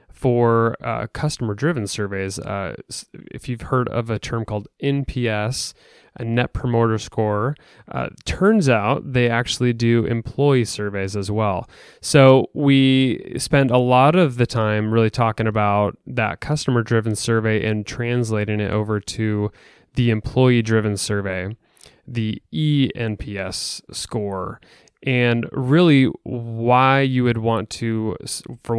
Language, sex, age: English, male, 20-39